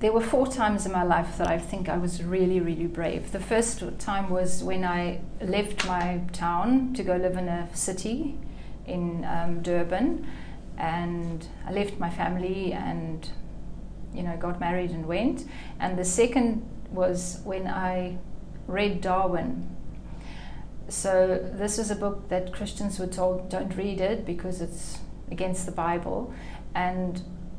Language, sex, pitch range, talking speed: English, female, 180-205 Hz, 155 wpm